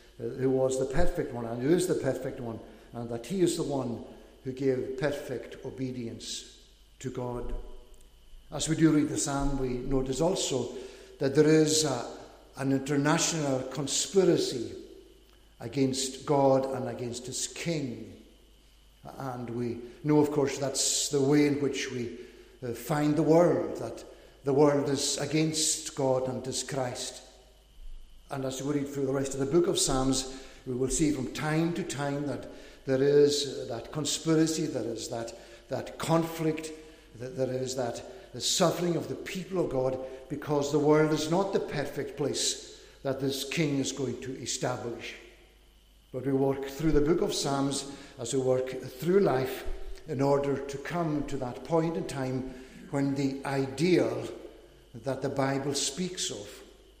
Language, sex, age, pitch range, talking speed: English, male, 60-79, 130-155 Hz, 160 wpm